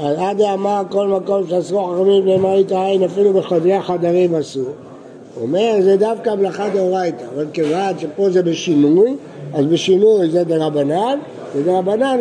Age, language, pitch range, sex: 60-79, Hebrew, 170-205 Hz, male